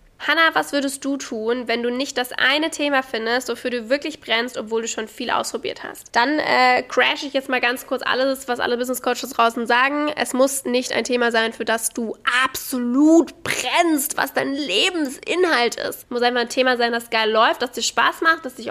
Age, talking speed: 10-29, 215 wpm